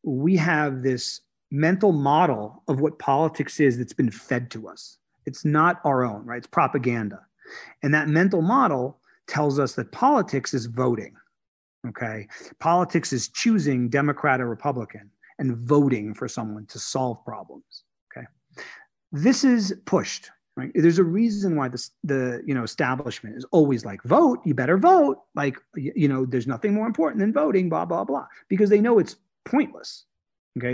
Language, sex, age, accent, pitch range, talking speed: English, male, 40-59, American, 130-180 Hz, 165 wpm